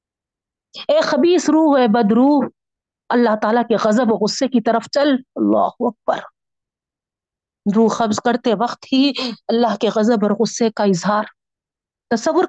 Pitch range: 220-275 Hz